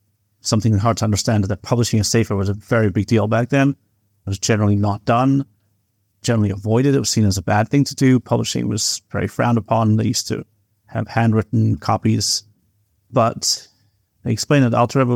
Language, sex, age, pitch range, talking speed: English, male, 30-49, 105-120 Hz, 190 wpm